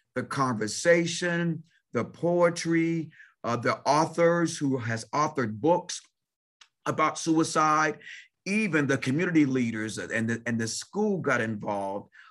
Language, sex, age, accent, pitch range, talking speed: English, male, 40-59, American, 130-165 Hz, 115 wpm